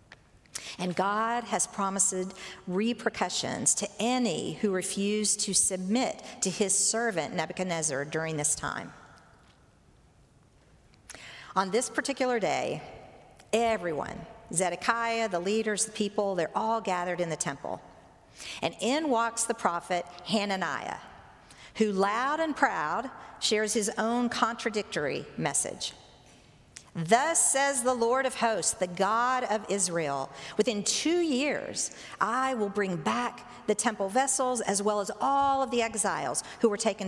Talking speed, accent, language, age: 130 wpm, American, English, 50-69